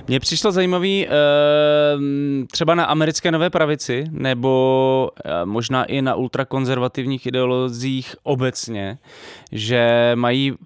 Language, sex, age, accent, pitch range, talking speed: Czech, male, 20-39, native, 120-140 Hz, 95 wpm